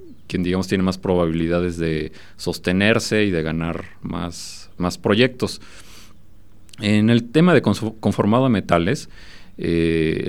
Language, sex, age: Spanish, male, 40-59